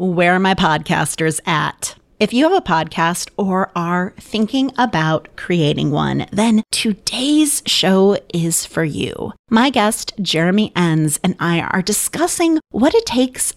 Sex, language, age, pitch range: female, English, 30-49, 175-245 Hz